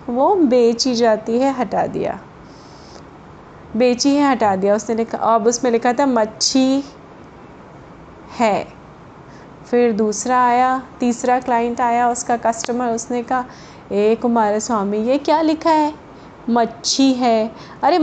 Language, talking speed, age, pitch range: Hindi, 125 wpm, 20-39, 235-295 Hz